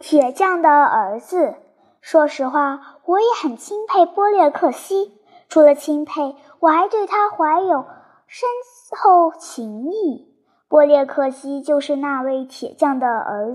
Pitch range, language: 280-365 Hz, Chinese